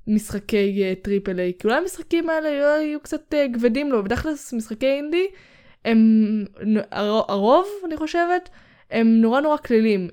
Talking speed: 160 wpm